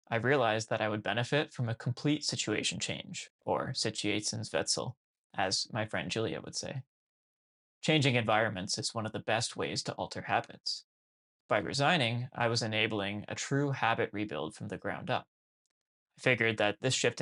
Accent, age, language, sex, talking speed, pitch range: American, 20-39, English, male, 165 wpm, 110-130 Hz